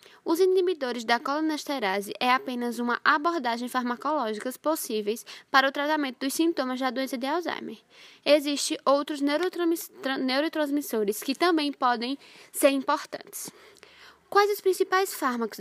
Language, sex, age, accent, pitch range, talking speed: Portuguese, female, 10-29, Brazilian, 235-300 Hz, 120 wpm